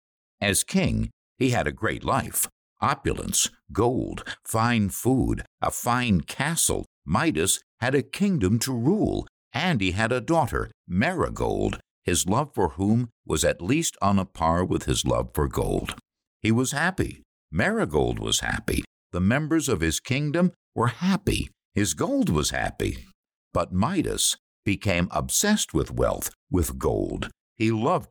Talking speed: 145 wpm